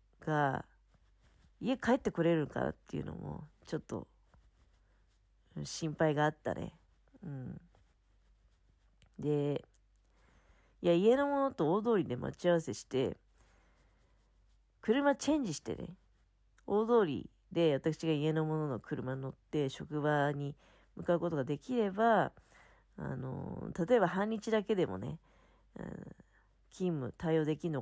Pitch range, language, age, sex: 130-195 Hz, Japanese, 40-59, female